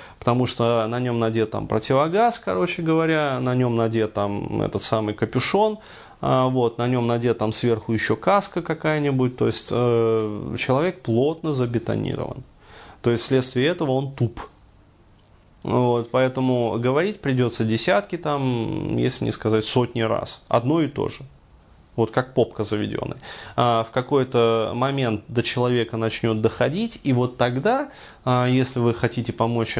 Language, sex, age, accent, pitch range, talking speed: Russian, male, 20-39, native, 110-130 Hz, 140 wpm